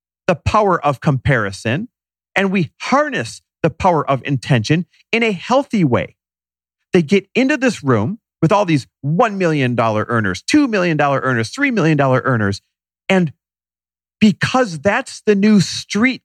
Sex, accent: male, American